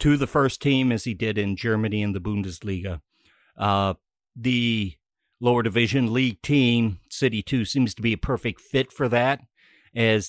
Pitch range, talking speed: 105-130 Hz, 170 wpm